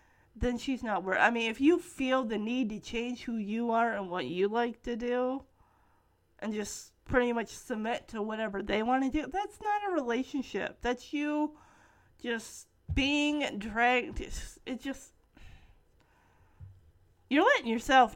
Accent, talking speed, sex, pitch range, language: American, 160 wpm, female, 205-255 Hz, English